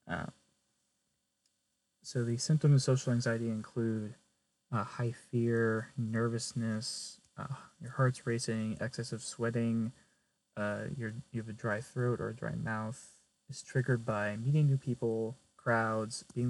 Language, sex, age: English, male, 20-39